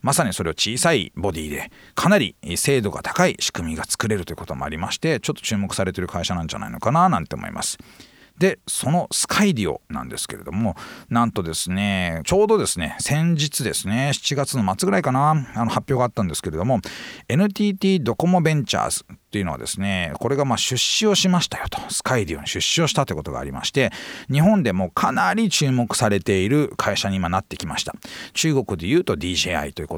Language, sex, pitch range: Japanese, male, 90-150 Hz